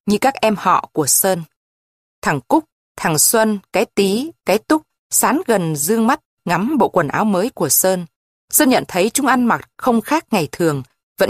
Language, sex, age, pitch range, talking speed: Vietnamese, female, 20-39, 175-245 Hz, 190 wpm